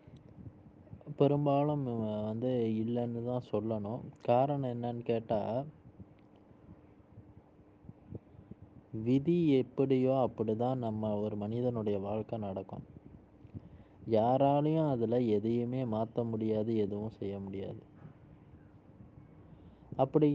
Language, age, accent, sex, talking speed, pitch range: Tamil, 20-39, native, male, 75 wpm, 110-140 Hz